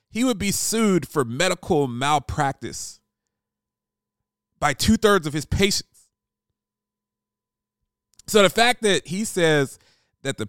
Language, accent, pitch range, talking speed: English, American, 110-155 Hz, 115 wpm